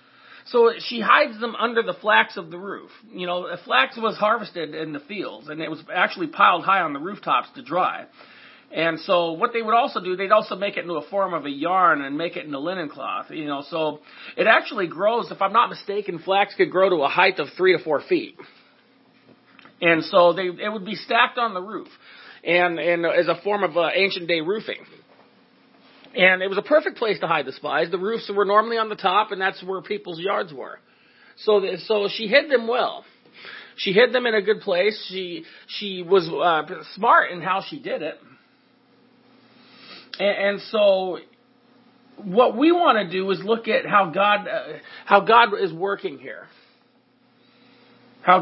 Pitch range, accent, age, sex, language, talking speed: 185-245 Hz, American, 40-59, male, English, 195 wpm